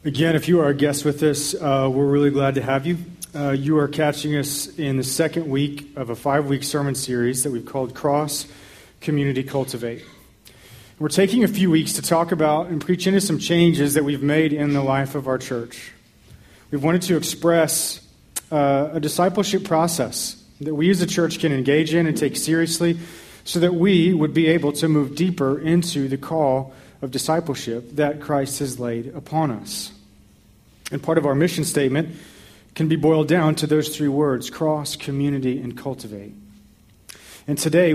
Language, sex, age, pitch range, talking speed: English, male, 40-59, 135-160 Hz, 185 wpm